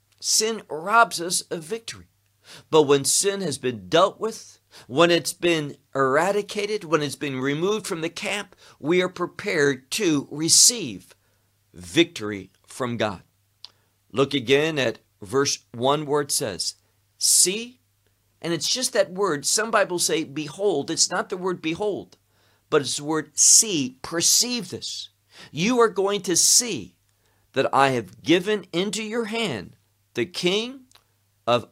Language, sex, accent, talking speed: English, male, American, 140 wpm